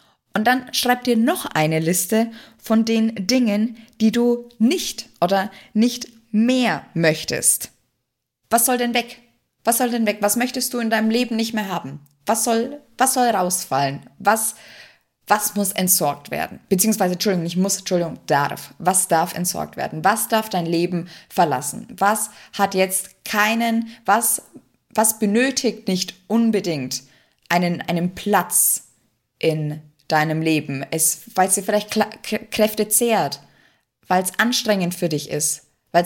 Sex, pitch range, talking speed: female, 175-225 Hz, 150 wpm